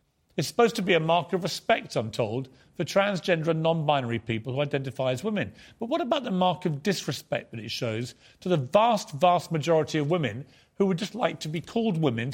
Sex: male